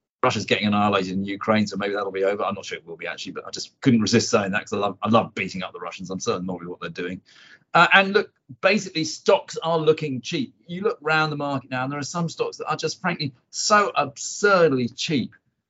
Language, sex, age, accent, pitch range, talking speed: English, male, 40-59, British, 115-155 Hz, 255 wpm